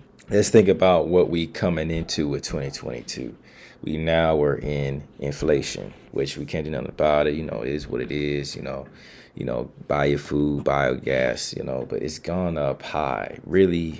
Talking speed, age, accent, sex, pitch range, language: 195 wpm, 30-49, American, male, 75-90 Hz, English